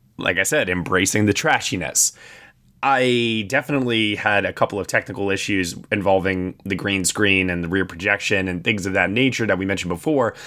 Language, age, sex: English, 20-39, male